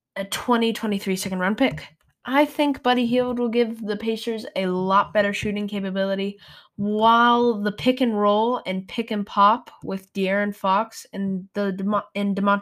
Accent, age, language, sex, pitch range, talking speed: American, 10-29, English, female, 180-225 Hz, 165 wpm